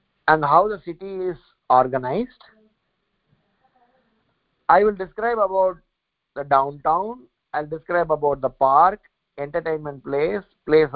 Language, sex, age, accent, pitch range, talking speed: English, male, 50-69, Indian, 155-220 Hz, 110 wpm